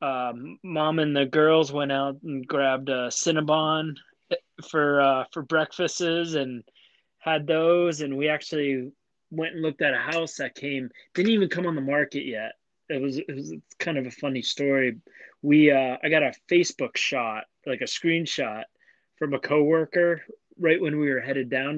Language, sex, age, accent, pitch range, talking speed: English, male, 20-39, American, 135-160 Hz, 175 wpm